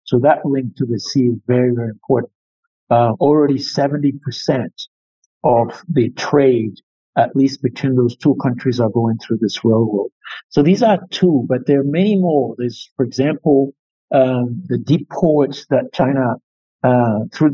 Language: English